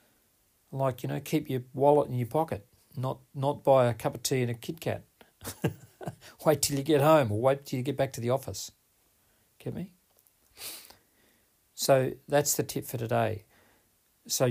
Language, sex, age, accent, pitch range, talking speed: English, male, 50-69, Australian, 110-145 Hz, 175 wpm